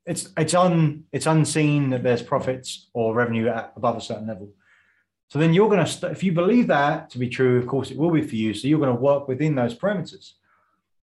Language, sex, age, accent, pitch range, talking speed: English, male, 30-49, British, 120-155 Hz, 220 wpm